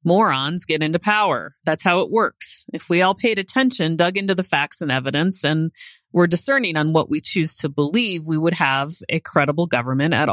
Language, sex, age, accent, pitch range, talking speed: English, female, 30-49, American, 150-195 Hz, 205 wpm